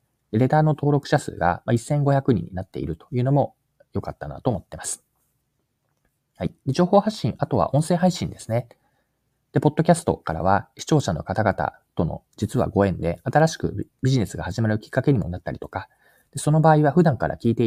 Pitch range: 95-145 Hz